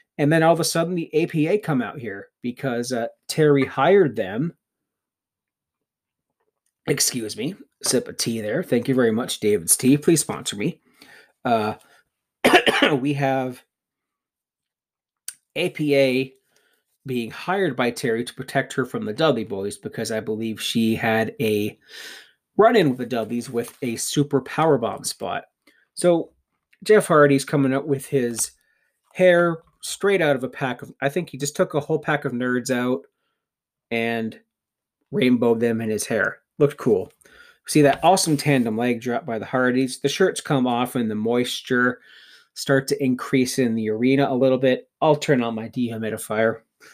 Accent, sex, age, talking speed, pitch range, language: American, male, 30-49, 160 wpm, 120-155 Hz, English